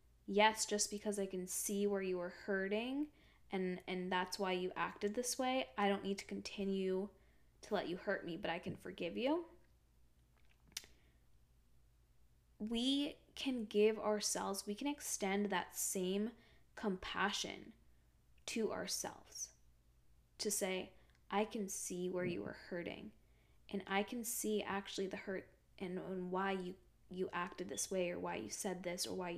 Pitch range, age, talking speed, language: 180-215 Hz, 10-29, 155 wpm, English